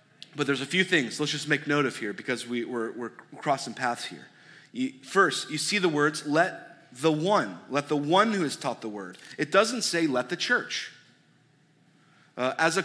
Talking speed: 195 wpm